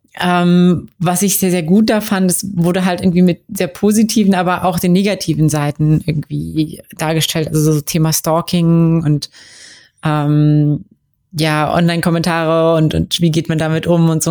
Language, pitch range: German, 165-195 Hz